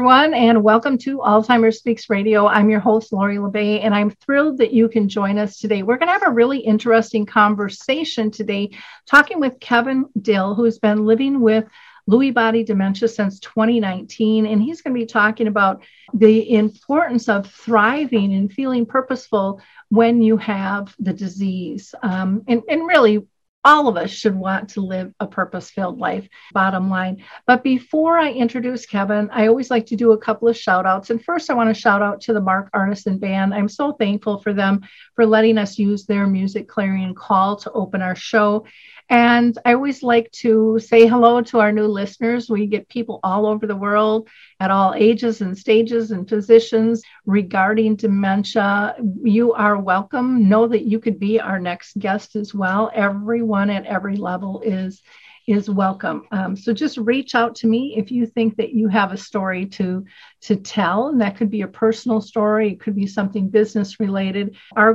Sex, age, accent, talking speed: female, 50-69, American, 185 wpm